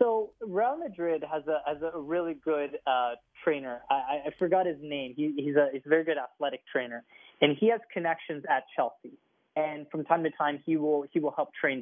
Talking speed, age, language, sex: 215 wpm, 20-39, English, male